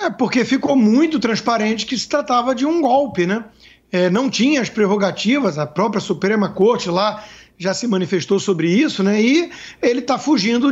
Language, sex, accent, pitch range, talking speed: Portuguese, male, Brazilian, 200-260 Hz, 175 wpm